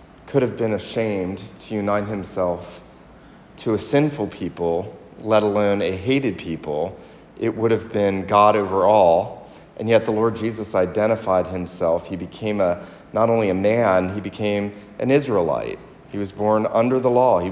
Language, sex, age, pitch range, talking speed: English, male, 40-59, 105-140 Hz, 165 wpm